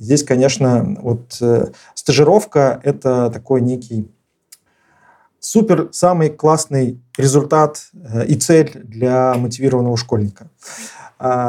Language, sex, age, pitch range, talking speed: Russian, male, 30-49, 115-145 Hz, 105 wpm